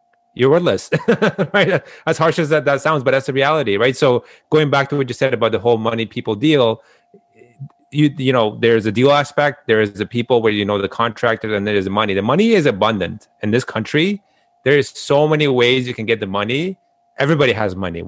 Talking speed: 225 wpm